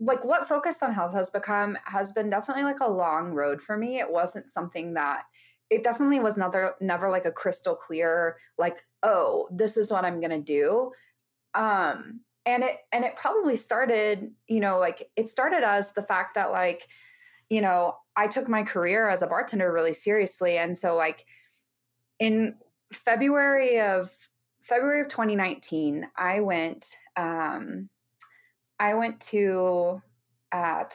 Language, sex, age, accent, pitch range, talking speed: English, female, 20-39, American, 160-220 Hz, 160 wpm